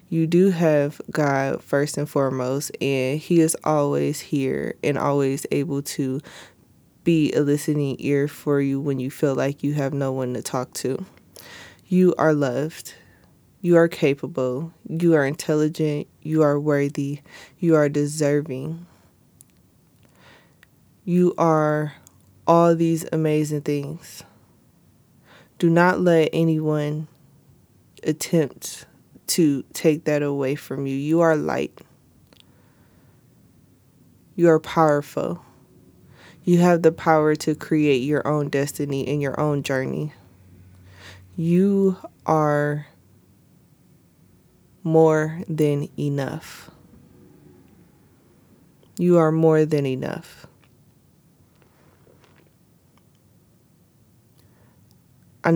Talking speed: 105 wpm